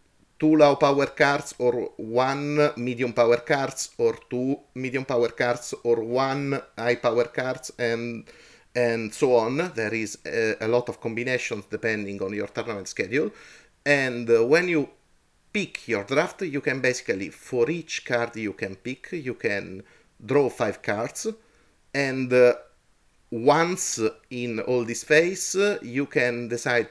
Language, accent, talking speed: English, Italian, 150 wpm